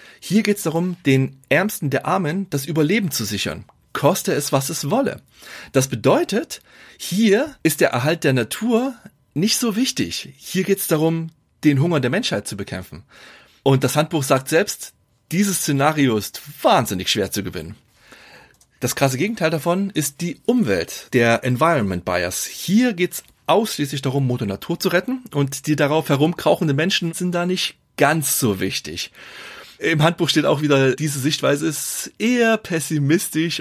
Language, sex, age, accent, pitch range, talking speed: German, male, 30-49, German, 130-175 Hz, 155 wpm